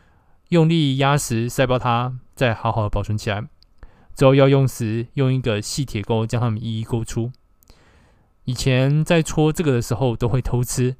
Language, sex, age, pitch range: Chinese, male, 20-39, 110-135 Hz